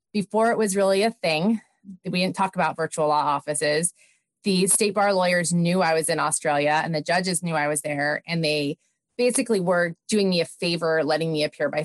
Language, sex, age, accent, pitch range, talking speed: English, female, 30-49, American, 165-230 Hz, 210 wpm